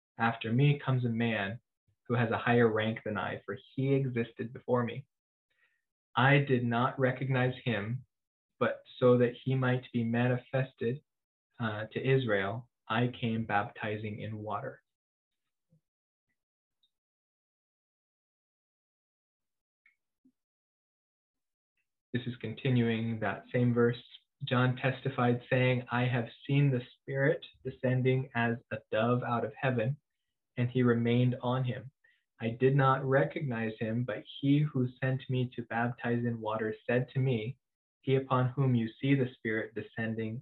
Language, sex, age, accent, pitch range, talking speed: English, male, 20-39, American, 115-130 Hz, 130 wpm